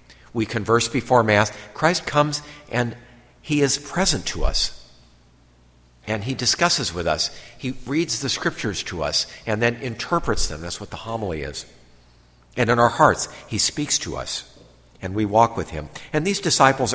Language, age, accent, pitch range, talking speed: English, 50-69, American, 80-125 Hz, 170 wpm